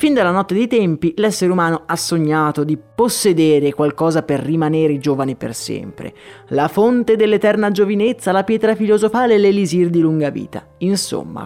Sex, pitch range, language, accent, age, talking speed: male, 145-210 Hz, Italian, native, 30-49, 155 wpm